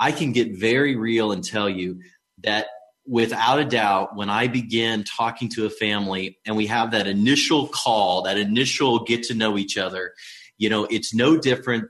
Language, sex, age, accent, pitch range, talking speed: English, male, 30-49, American, 110-155 Hz, 185 wpm